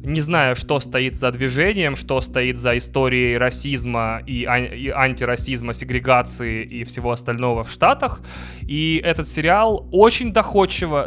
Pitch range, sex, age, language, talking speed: 130-165 Hz, male, 20-39, Russian, 140 wpm